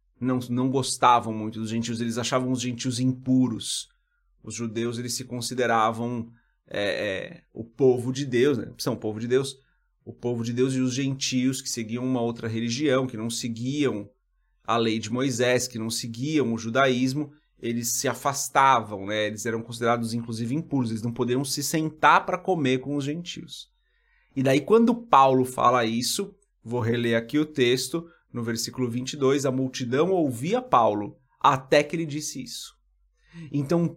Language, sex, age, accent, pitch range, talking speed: Portuguese, male, 30-49, Brazilian, 115-145 Hz, 170 wpm